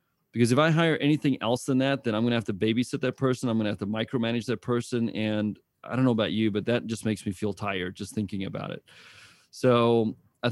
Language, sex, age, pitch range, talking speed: English, male, 30-49, 110-135 Hz, 250 wpm